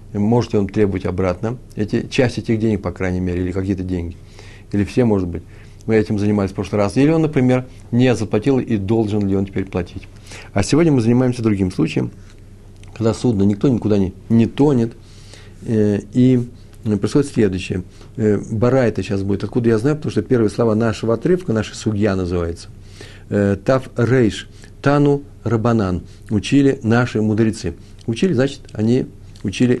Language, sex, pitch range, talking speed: Russian, male, 100-120 Hz, 155 wpm